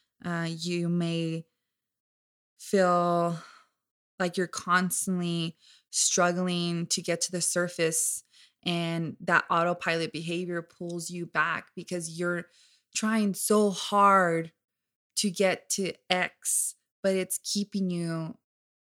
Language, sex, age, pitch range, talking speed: English, female, 20-39, 170-195 Hz, 105 wpm